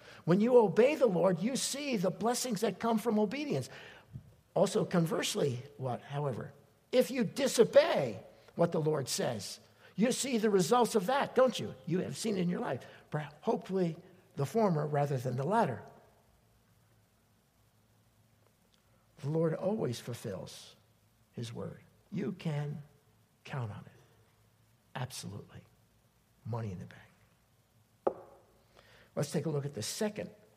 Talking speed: 135 wpm